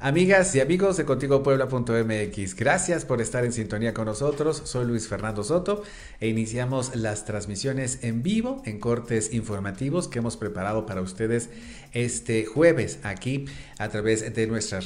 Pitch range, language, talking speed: 105-145 Hz, Spanish, 155 wpm